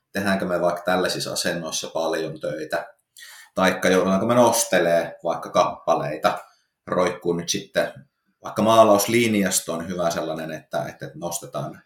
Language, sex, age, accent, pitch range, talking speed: Finnish, male, 30-49, native, 85-105 Hz, 115 wpm